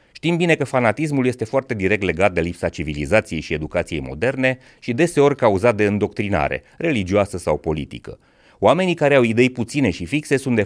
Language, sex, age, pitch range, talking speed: Romanian, male, 30-49, 95-130 Hz, 175 wpm